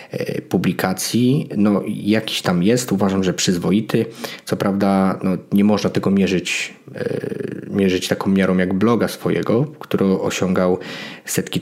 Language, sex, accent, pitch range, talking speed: English, male, Polish, 95-105 Hz, 125 wpm